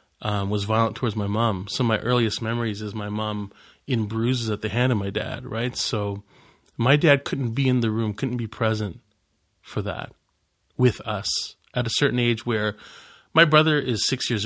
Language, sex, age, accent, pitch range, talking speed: English, male, 30-49, American, 110-130 Hz, 195 wpm